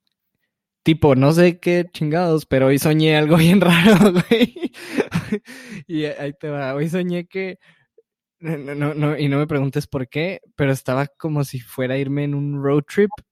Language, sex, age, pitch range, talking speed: Spanish, male, 20-39, 130-165 Hz, 175 wpm